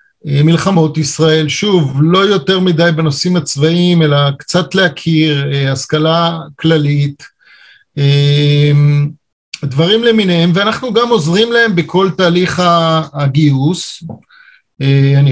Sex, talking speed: male, 90 wpm